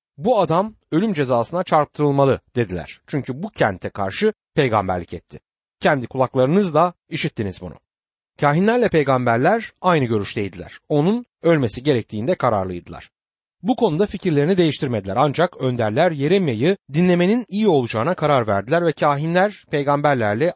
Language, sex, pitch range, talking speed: Turkish, male, 115-180 Hz, 115 wpm